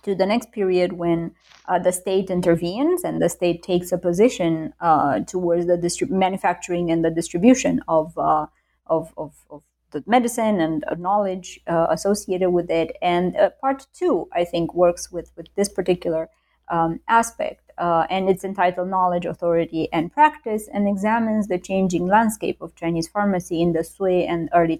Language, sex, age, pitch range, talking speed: English, female, 30-49, 170-220 Hz, 170 wpm